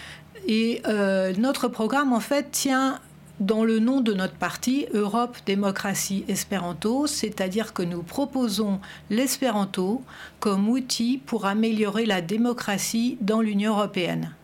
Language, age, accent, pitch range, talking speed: French, 60-79, French, 195-245 Hz, 125 wpm